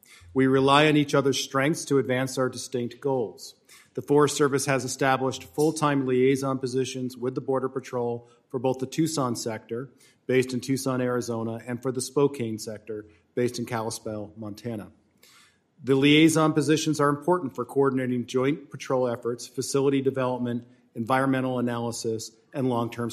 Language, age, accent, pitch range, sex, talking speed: English, 40-59, American, 120-140 Hz, male, 150 wpm